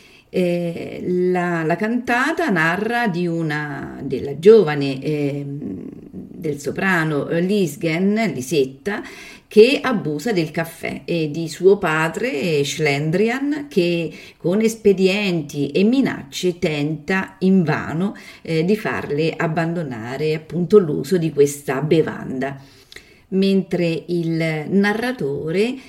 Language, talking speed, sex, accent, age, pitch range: Italian, 95 wpm, female, native, 40-59, 150-205 Hz